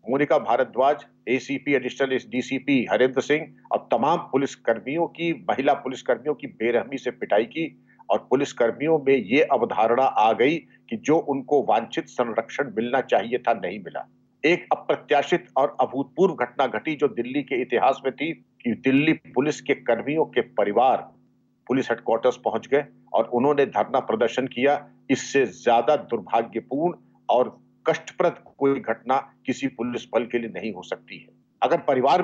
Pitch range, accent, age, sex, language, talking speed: 120-150 Hz, native, 50-69, male, Hindi, 120 wpm